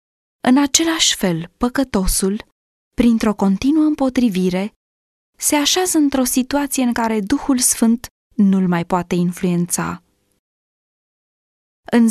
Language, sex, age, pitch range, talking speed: Romanian, female, 20-39, 185-270 Hz, 100 wpm